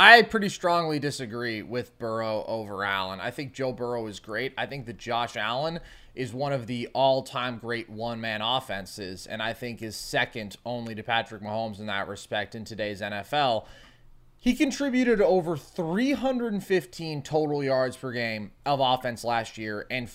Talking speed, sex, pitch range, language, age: 165 wpm, male, 120-145 Hz, English, 20-39